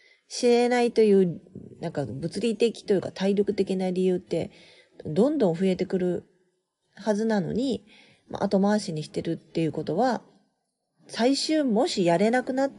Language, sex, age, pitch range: Japanese, female, 40-59, 170-250 Hz